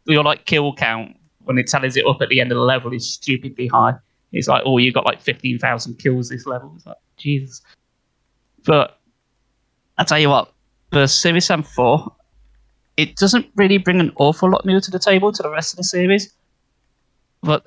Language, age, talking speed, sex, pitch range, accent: English, 20-39, 195 wpm, male, 120-145 Hz, British